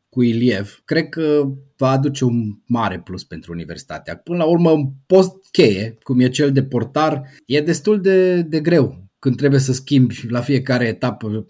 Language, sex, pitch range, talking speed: Romanian, male, 120-160 Hz, 175 wpm